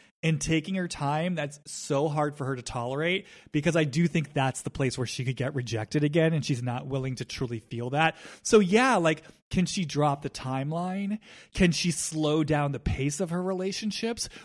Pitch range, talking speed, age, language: 135-185 Hz, 205 wpm, 20-39, English